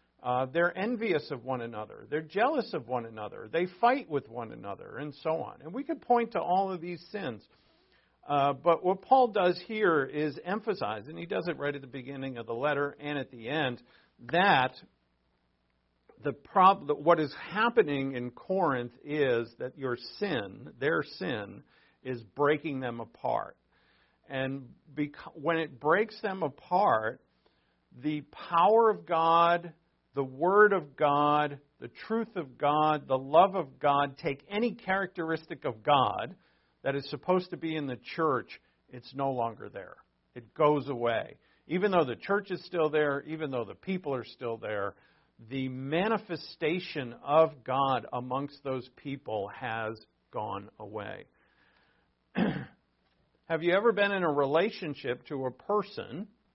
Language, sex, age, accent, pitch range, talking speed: English, male, 50-69, American, 130-175 Hz, 155 wpm